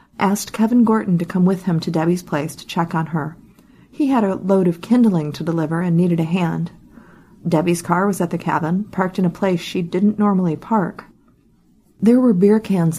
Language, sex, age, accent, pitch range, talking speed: English, female, 40-59, American, 170-200 Hz, 205 wpm